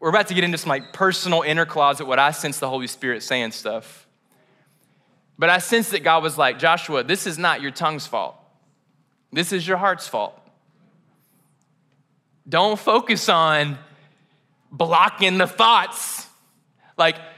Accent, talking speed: American, 150 wpm